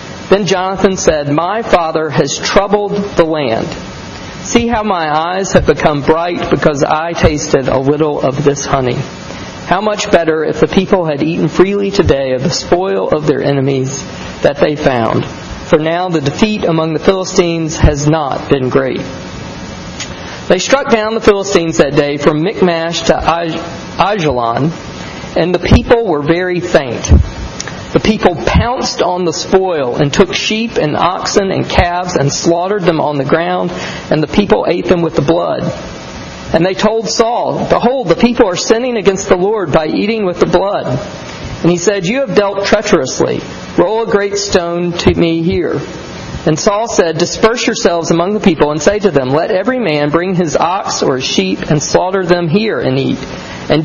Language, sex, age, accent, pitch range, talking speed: English, male, 40-59, American, 155-200 Hz, 175 wpm